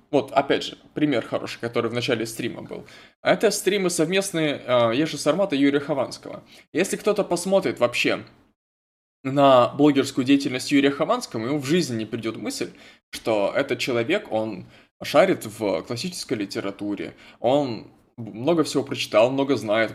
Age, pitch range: 20-39, 115-160 Hz